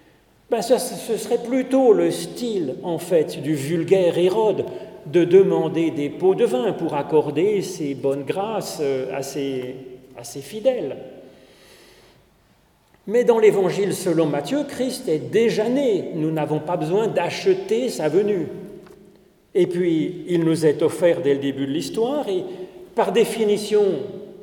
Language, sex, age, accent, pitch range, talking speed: French, male, 40-59, French, 155-230 Hz, 140 wpm